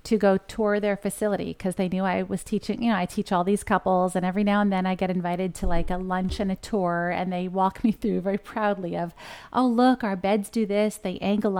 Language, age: English, 30-49